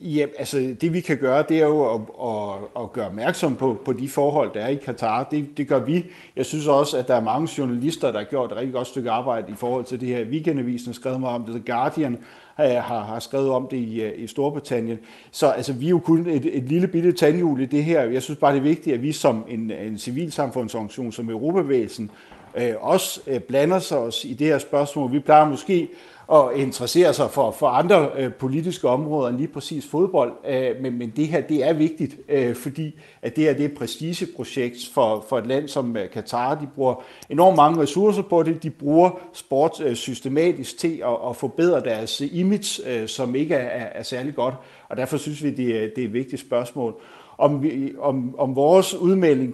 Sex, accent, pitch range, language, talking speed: male, native, 125-155 Hz, Danish, 205 wpm